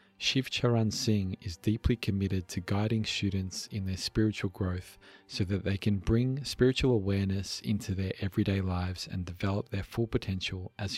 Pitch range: 95-115 Hz